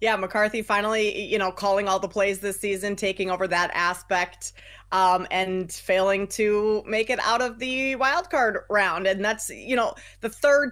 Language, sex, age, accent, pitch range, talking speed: English, female, 20-39, American, 200-255 Hz, 185 wpm